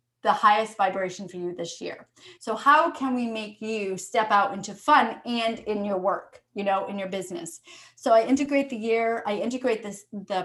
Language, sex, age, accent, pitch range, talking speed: English, female, 30-49, American, 200-235 Hz, 200 wpm